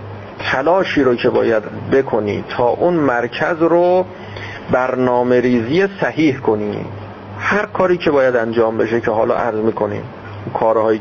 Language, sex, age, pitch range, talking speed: Persian, male, 40-59, 105-145 Hz, 130 wpm